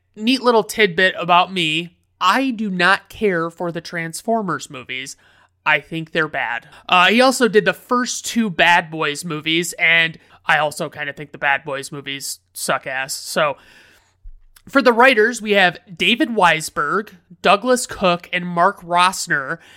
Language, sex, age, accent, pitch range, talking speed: English, male, 30-49, American, 155-190 Hz, 160 wpm